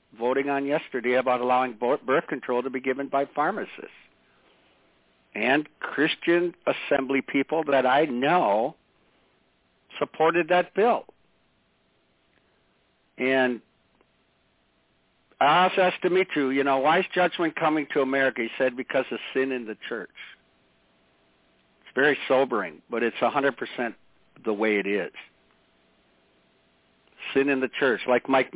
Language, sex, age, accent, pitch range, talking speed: English, male, 60-79, American, 125-155 Hz, 125 wpm